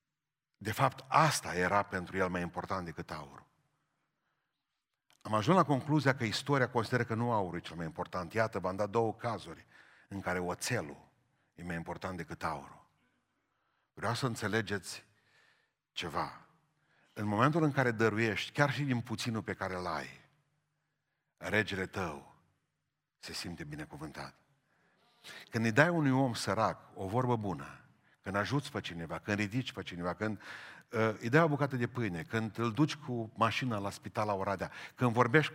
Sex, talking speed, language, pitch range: male, 160 wpm, Romanian, 100-140 Hz